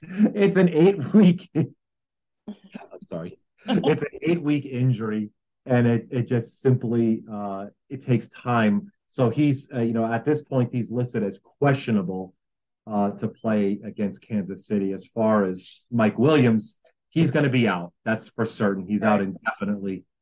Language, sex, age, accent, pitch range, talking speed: English, male, 40-59, American, 105-125 Hz, 160 wpm